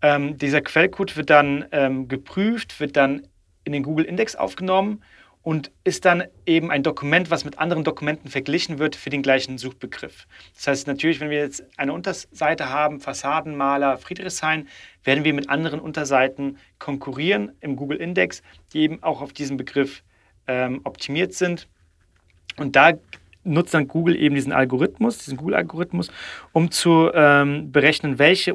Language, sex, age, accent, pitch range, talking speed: German, male, 40-59, German, 135-160 Hz, 155 wpm